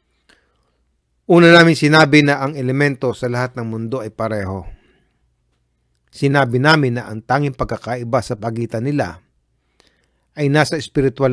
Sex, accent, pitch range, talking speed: male, native, 105-145 Hz, 125 wpm